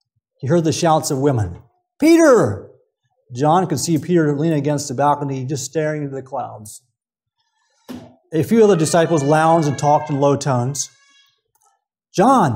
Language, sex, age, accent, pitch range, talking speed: English, male, 30-49, American, 120-170 Hz, 150 wpm